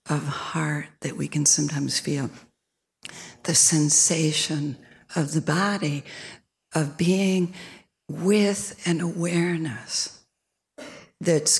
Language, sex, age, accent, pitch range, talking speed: English, female, 60-79, American, 150-180 Hz, 95 wpm